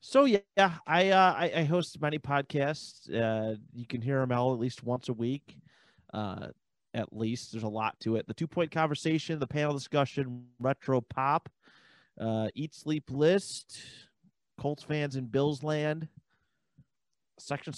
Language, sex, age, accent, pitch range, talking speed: English, male, 30-49, American, 115-150 Hz, 155 wpm